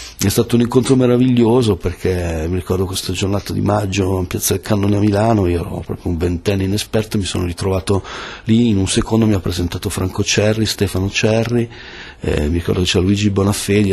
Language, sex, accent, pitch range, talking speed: Italian, male, native, 95-110 Hz, 205 wpm